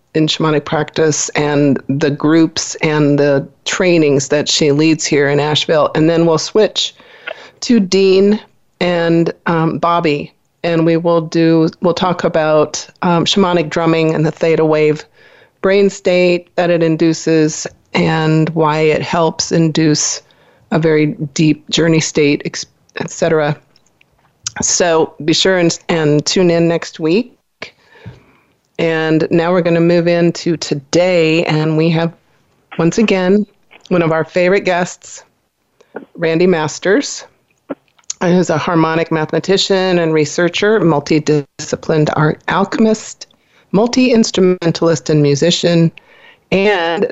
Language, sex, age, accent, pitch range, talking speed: English, female, 40-59, American, 155-175 Hz, 125 wpm